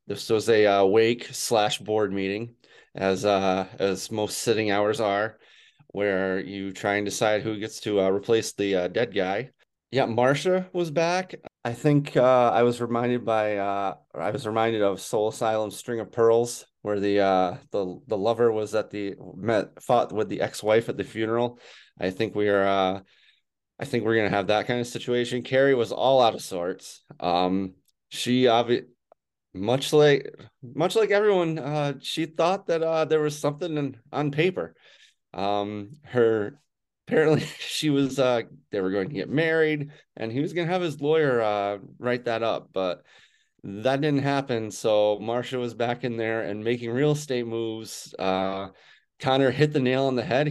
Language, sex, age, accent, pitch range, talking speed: English, male, 20-39, American, 105-140 Hz, 180 wpm